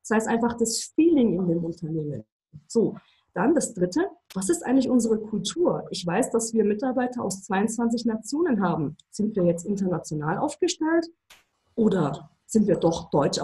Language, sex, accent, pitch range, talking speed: English, female, German, 190-255 Hz, 160 wpm